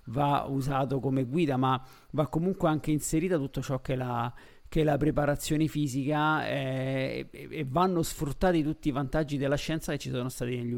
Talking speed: 190 wpm